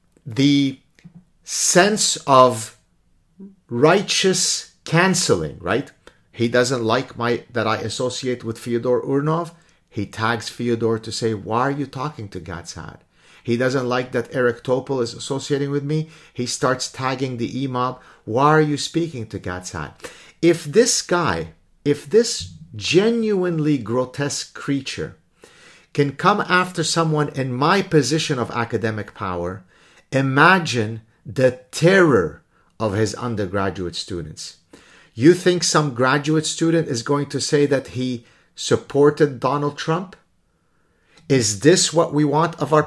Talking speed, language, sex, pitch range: 130 wpm, English, male, 115-160 Hz